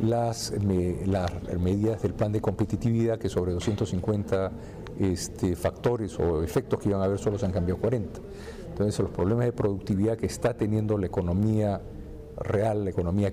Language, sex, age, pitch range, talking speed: Spanish, male, 50-69, 95-115 Hz, 165 wpm